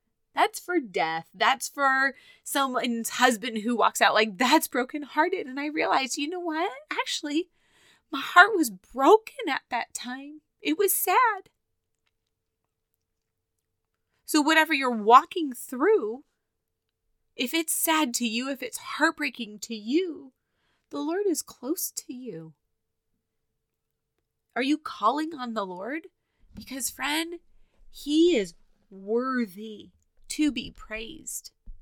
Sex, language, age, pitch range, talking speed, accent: female, English, 20-39, 175-295 Hz, 125 wpm, American